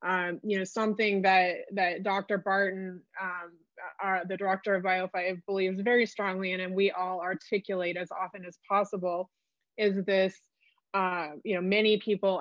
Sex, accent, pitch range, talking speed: female, American, 180-200 Hz, 165 wpm